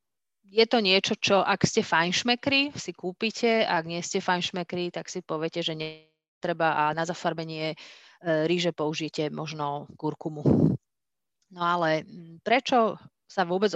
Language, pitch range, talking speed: Slovak, 165-205 Hz, 130 wpm